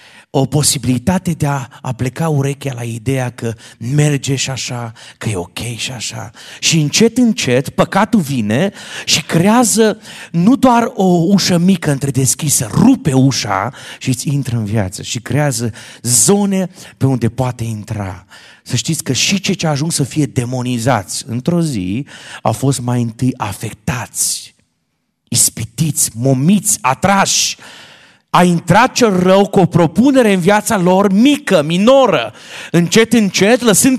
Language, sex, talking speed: Romanian, male, 140 wpm